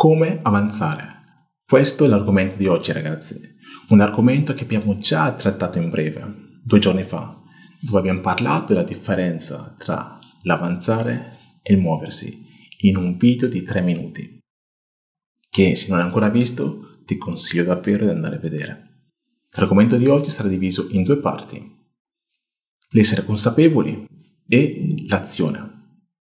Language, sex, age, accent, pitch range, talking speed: Italian, male, 30-49, native, 100-155 Hz, 135 wpm